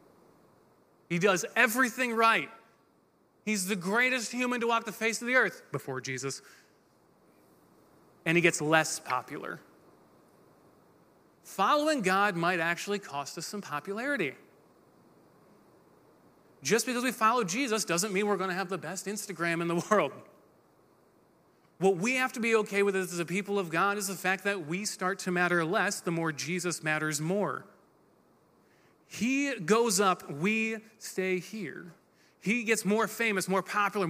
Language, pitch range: English, 180-230 Hz